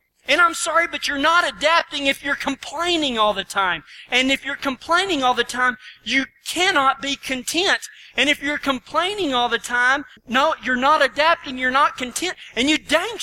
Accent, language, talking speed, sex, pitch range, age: American, English, 185 wpm, male, 170-280 Hz, 40-59